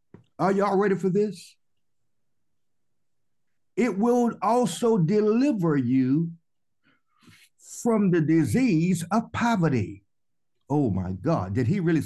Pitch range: 125-190 Hz